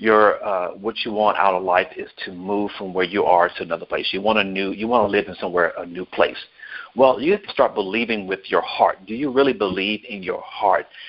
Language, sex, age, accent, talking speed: English, male, 50-69, American, 255 wpm